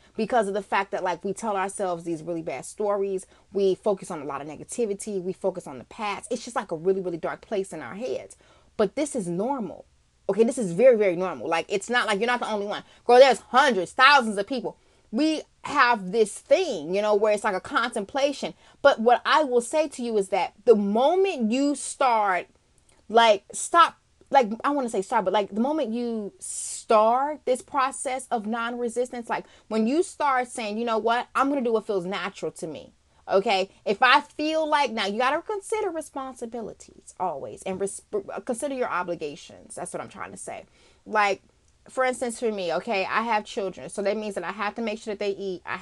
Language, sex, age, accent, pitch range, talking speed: English, female, 20-39, American, 195-255 Hz, 215 wpm